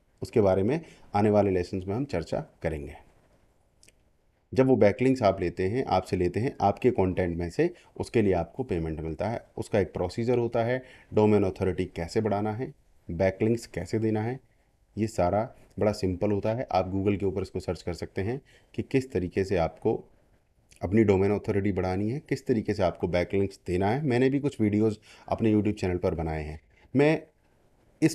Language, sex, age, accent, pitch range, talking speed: English, male, 30-49, Indian, 95-120 Hz, 125 wpm